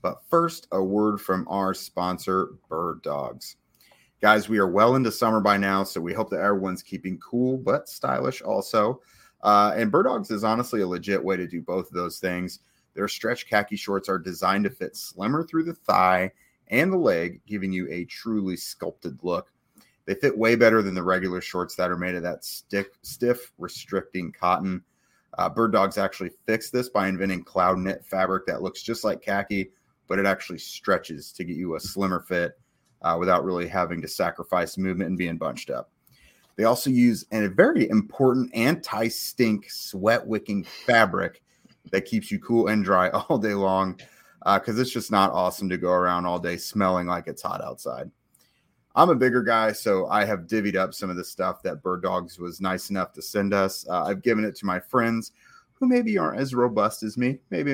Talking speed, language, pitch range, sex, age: 195 wpm, English, 90-115 Hz, male, 30-49